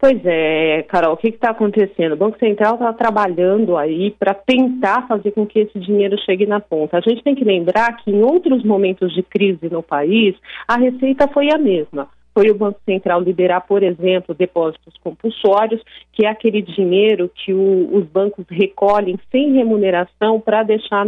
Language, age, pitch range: Portuguese, 40-59, 195-235 Hz